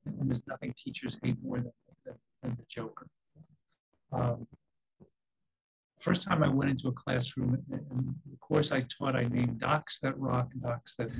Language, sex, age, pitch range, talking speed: English, male, 50-69, 130-160 Hz, 170 wpm